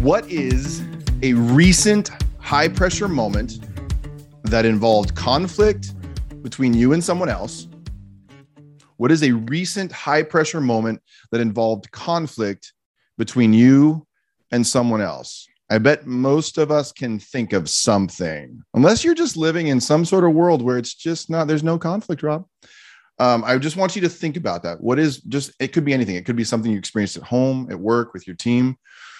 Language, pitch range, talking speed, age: English, 110-155 Hz, 175 wpm, 30-49